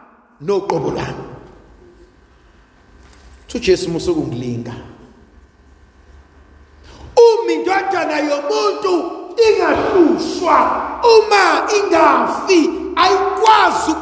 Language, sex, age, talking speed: English, male, 50-69, 50 wpm